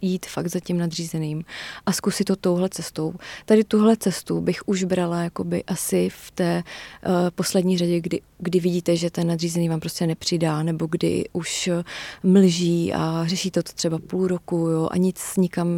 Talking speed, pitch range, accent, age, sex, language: 175 wpm, 170-195 Hz, native, 30-49, female, Czech